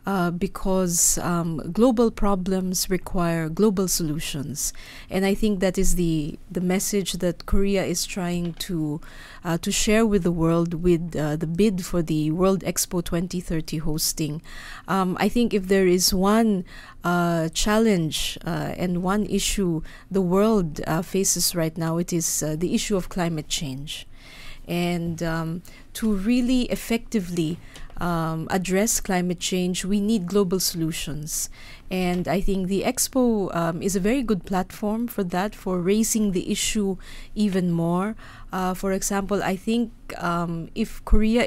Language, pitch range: Korean, 170-205 Hz